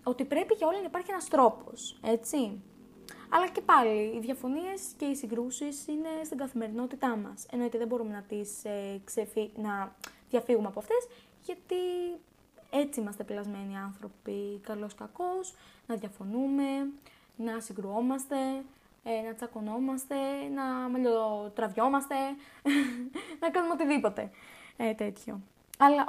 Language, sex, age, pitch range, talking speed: Greek, female, 20-39, 215-275 Hz, 125 wpm